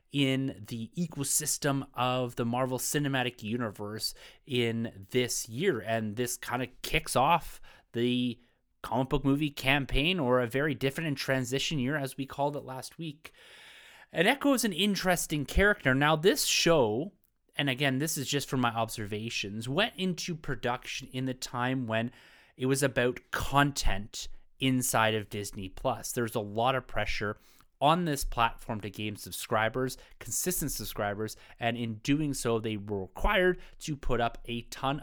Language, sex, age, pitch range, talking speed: English, male, 30-49, 110-145 Hz, 160 wpm